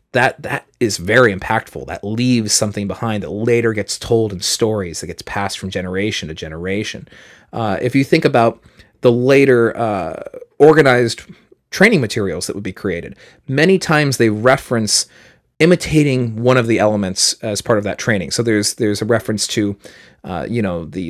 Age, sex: 30-49, male